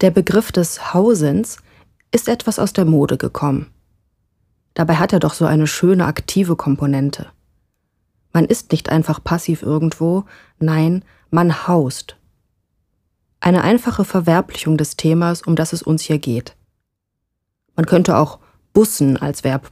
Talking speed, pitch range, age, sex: 135 wpm, 140-185 Hz, 30-49, female